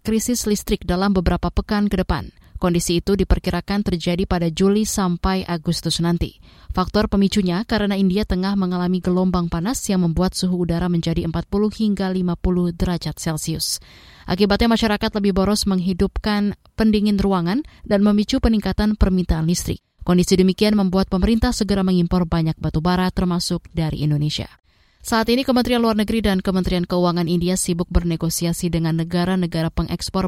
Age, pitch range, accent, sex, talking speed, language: 20-39, 175-205 Hz, native, female, 145 wpm, Indonesian